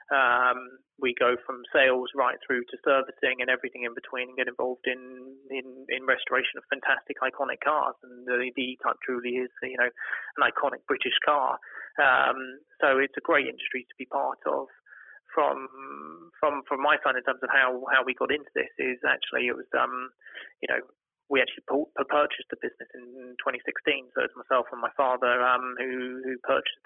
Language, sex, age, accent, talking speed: English, male, 20-39, British, 190 wpm